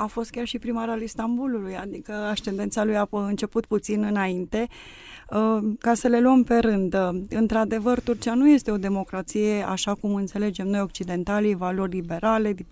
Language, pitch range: Romanian, 190-220 Hz